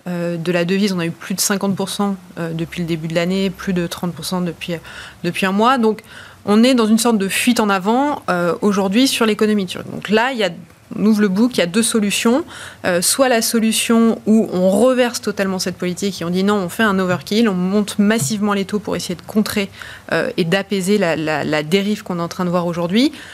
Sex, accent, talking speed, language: female, French, 225 wpm, French